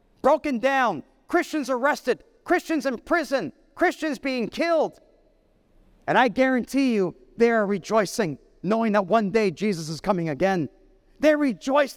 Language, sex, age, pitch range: English, male, 40-59, 195-285 Hz